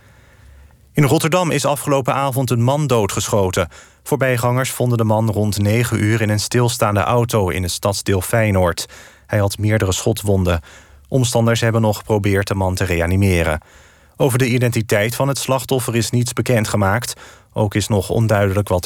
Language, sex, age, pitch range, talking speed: Dutch, male, 40-59, 100-125 Hz, 155 wpm